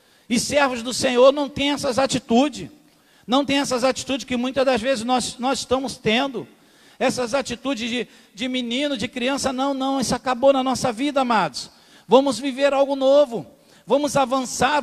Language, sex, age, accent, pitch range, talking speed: Portuguese, male, 50-69, Brazilian, 255-285 Hz, 160 wpm